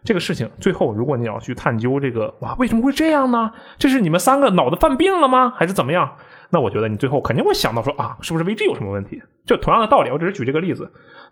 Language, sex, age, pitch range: Chinese, male, 20-39, 120-180 Hz